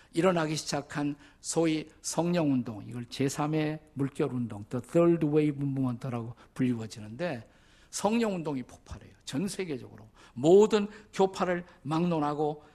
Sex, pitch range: male, 140-195 Hz